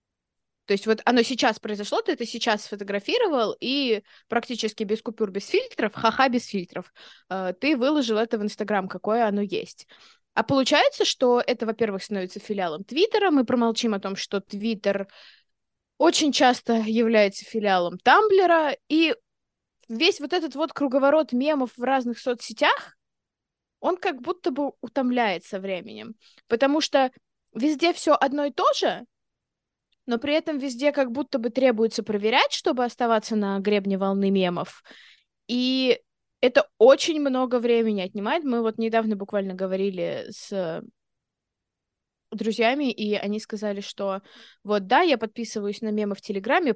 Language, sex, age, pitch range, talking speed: Russian, female, 20-39, 205-275 Hz, 140 wpm